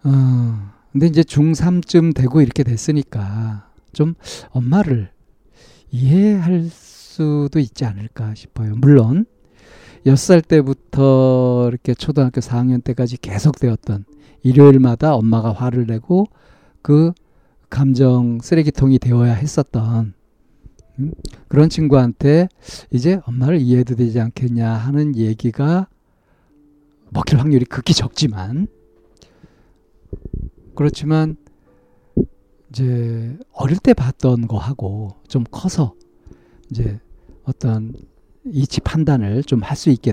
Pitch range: 115-145 Hz